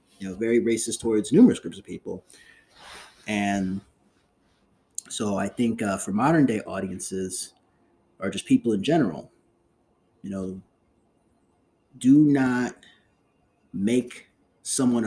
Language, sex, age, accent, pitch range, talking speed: English, male, 30-49, American, 95-130 Hz, 115 wpm